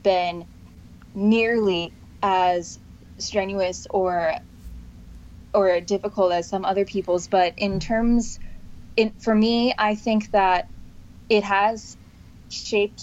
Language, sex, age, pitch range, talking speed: English, female, 10-29, 185-210 Hz, 105 wpm